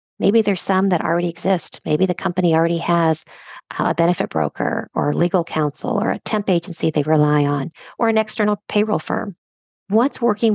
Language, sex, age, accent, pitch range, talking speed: English, female, 50-69, American, 160-200 Hz, 175 wpm